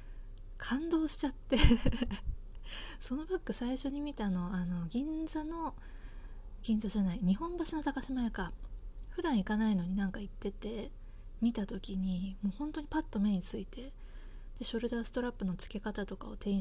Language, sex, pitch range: Japanese, female, 185-245 Hz